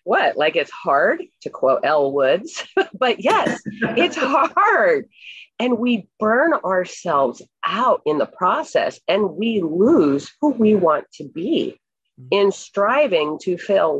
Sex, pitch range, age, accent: female, 180-260 Hz, 40-59, American